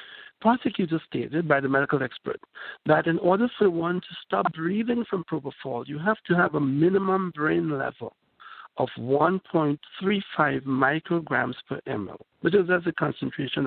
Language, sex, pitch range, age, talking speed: English, male, 130-175 Hz, 60-79, 150 wpm